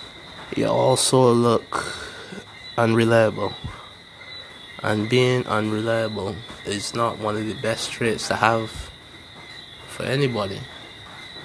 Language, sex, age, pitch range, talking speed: English, male, 20-39, 105-120 Hz, 95 wpm